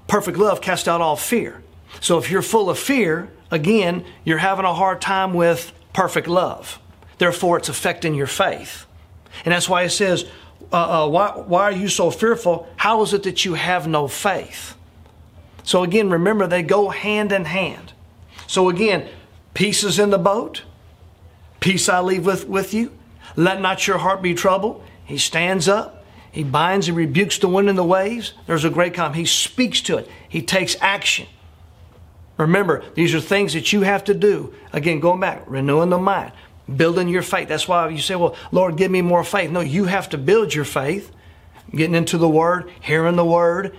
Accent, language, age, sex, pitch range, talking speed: American, English, 40-59, male, 150-190 Hz, 190 wpm